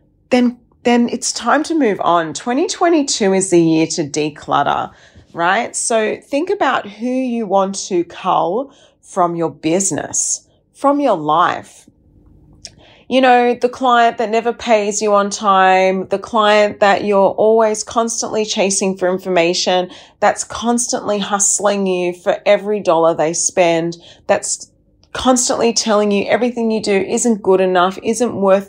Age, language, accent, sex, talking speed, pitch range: 30-49, English, Australian, female, 140 wpm, 160-225 Hz